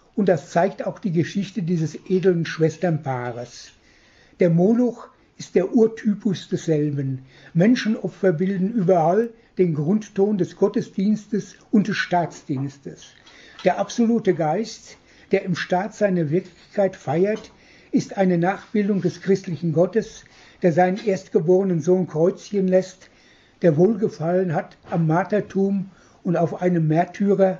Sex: male